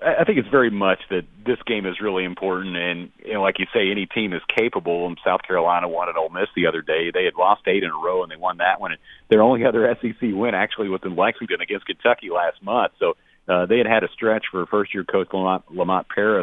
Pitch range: 90-110 Hz